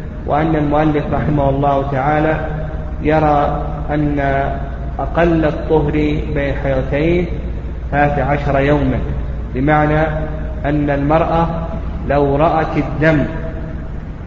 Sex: male